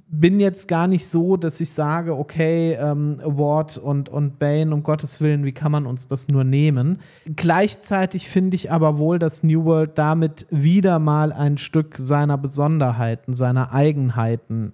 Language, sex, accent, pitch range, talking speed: German, male, German, 145-180 Hz, 165 wpm